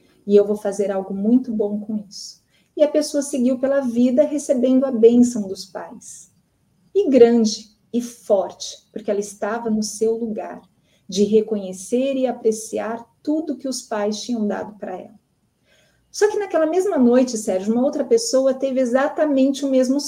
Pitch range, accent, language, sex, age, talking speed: 210-275 Hz, Brazilian, Portuguese, female, 40-59, 165 wpm